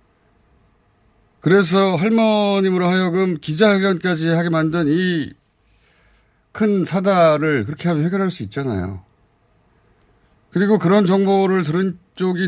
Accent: native